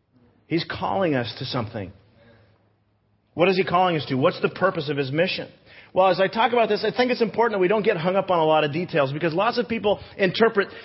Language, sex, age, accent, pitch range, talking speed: English, male, 40-59, American, 115-185 Hz, 240 wpm